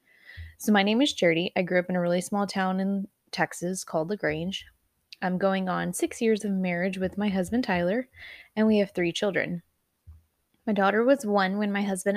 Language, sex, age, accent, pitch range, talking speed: English, female, 20-39, American, 170-210 Hz, 195 wpm